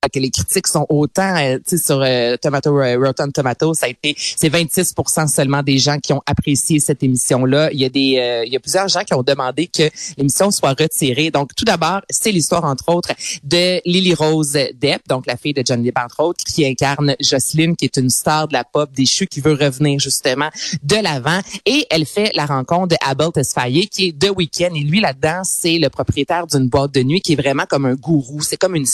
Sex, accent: male, Canadian